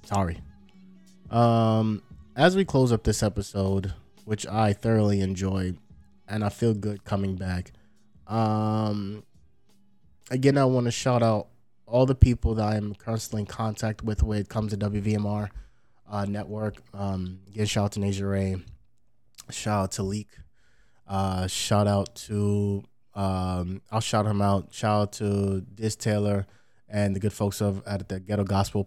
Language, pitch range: English, 100-120 Hz